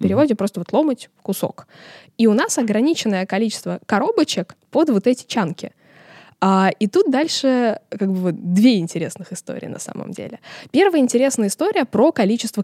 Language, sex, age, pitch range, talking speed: Russian, female, 20-39, 180-245 Hz, 160 wpm